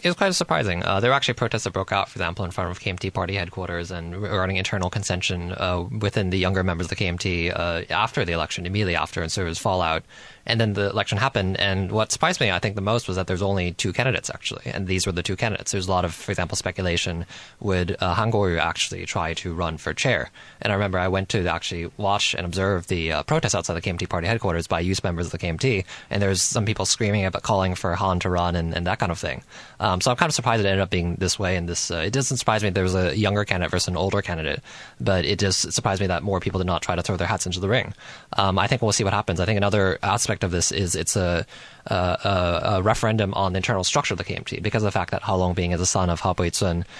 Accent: American